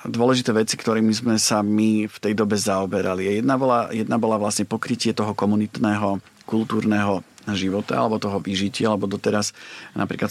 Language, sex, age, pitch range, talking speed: Slovak, male, 40-59, 100-110 Hz, 150 wpm